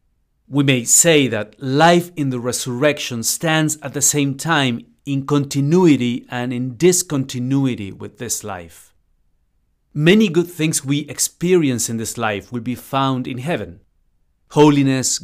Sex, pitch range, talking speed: male, 100-140 Hz, 140 wpm